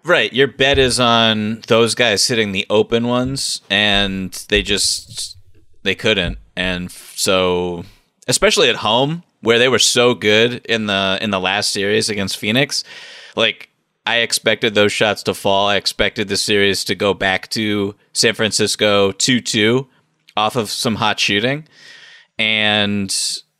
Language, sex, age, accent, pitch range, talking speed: English, male, 30-49, American, 100-120 Hz, 150 wpm